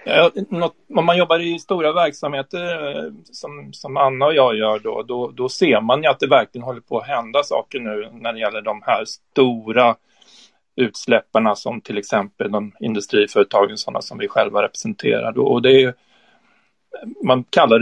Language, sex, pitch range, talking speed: Swedish, male, 115-140 Hz, 170 wpm